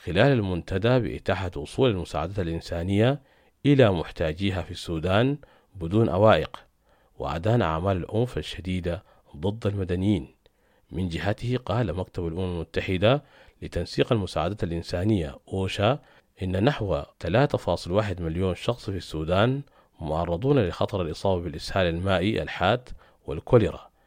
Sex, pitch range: male, 85-110 Hz